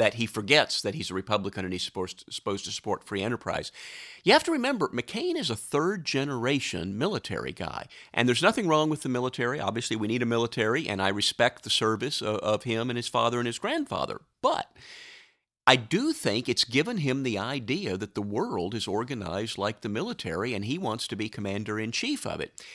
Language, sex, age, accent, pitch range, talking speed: English, male, 50-69, American, 100-135 Hz, 195 wpm